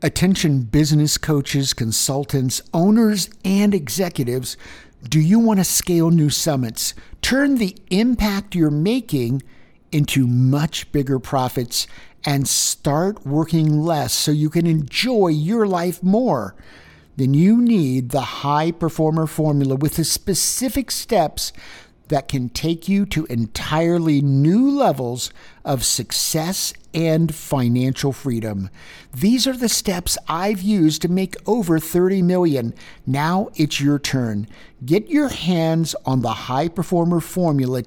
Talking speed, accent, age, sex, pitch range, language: 130 wpm, American, 50-69, male, 130-180 Hz, English